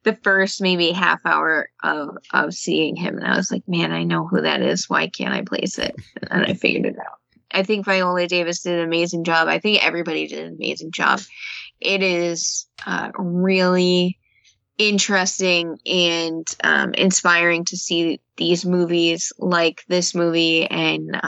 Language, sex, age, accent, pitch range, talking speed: English, female, 20-39, American, 165-180 Hz, 170 wpm